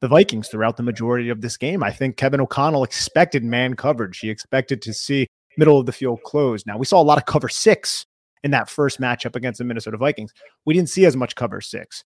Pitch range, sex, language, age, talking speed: 120-145 Hz, male, English, 30-49, 235 wpm